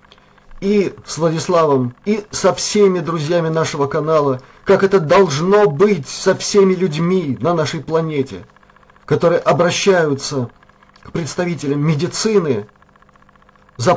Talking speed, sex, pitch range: 105 wpm, male, 140-180 Hz